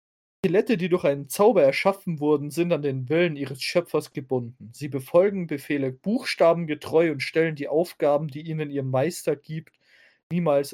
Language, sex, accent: German, male, German